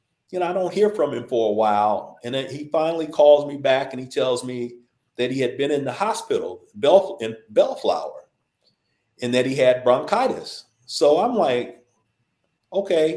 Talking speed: 180 wpm